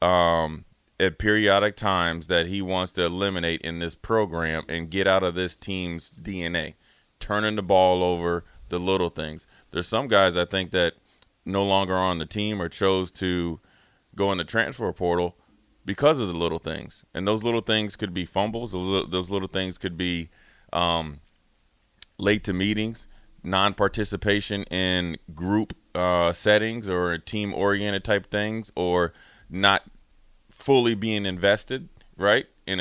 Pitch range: 85-100 Hz